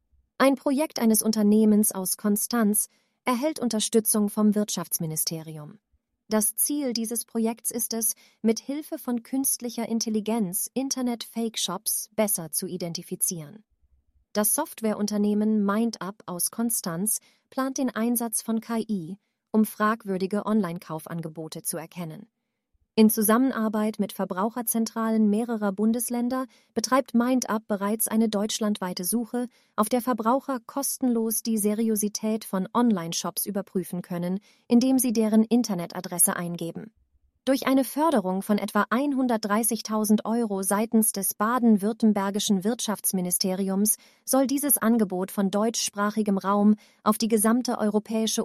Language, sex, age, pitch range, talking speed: German, female, 30-49, 200-235 Hz, 110 wpm